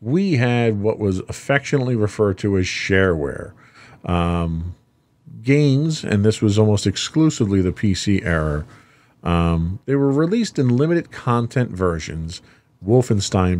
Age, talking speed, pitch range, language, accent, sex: 40-59, 125 wpm, 95-135 Hz, English, American, male